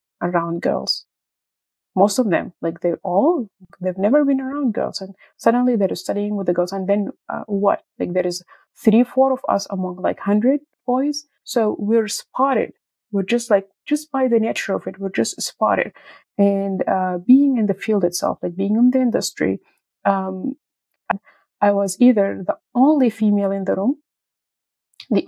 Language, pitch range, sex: English, 195-245 Hz, female